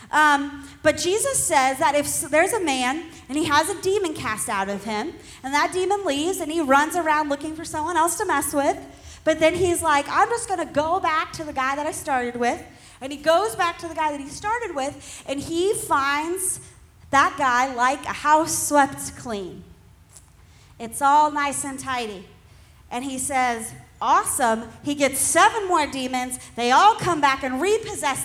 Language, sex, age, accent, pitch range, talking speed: English, female, 30-49, American, 250-330 Hz, 190 wpm